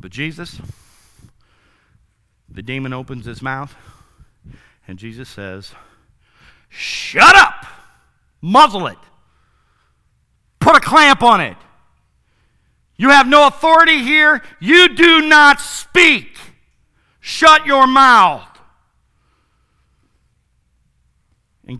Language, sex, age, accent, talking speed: English, male, 50-69, American, 90 wpm